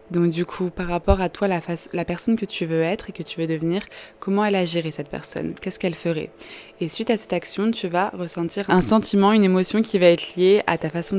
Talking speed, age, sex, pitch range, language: 245 wpm, 20-39, female, 165-195 Hz, French